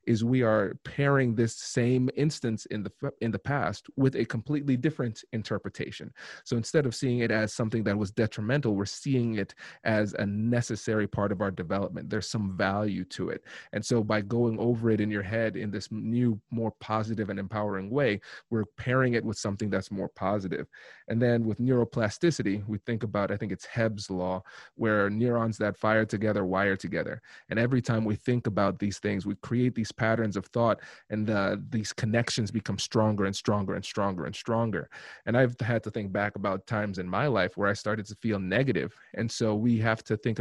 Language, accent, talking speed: English, American, 200 wpm